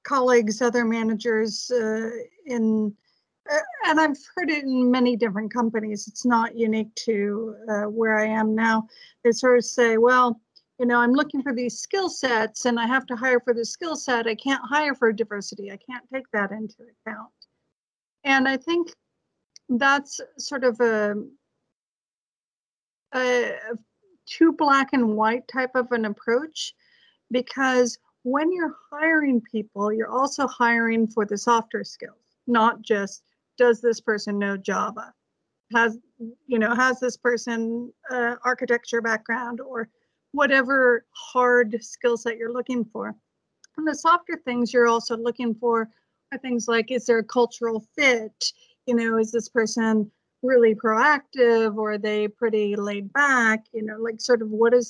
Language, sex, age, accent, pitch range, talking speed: English, female, 50-69, American, 225-260 Hz, 155 wpm